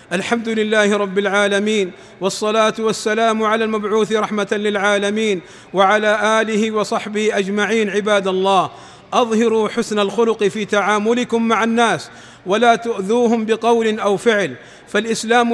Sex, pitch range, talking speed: male, 210-230 Hz, 110 wpm